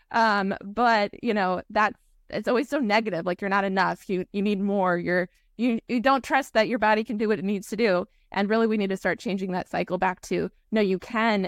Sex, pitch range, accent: female, 185-225 Hz, American